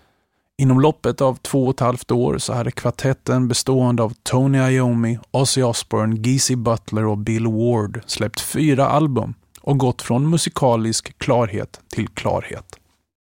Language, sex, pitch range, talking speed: Swedish, male, 110-135 Hz, 145 wpm